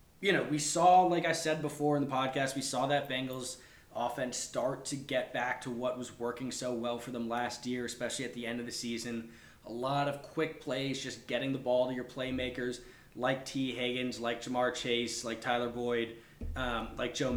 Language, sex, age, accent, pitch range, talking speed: English, male, 20-39, American, 120-135 Hz, 210 wpm